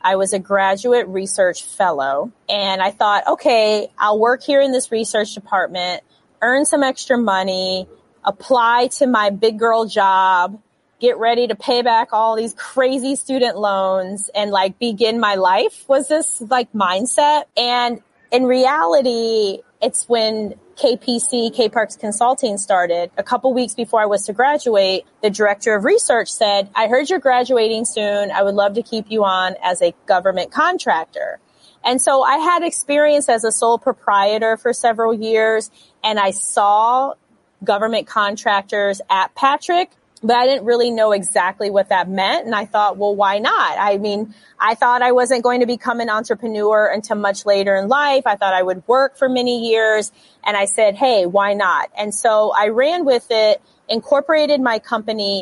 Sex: female